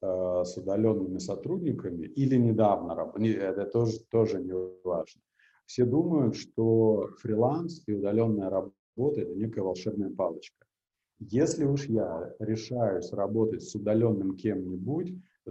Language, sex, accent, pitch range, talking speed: Russian, male, native, 100-125 Hz, 115 wpm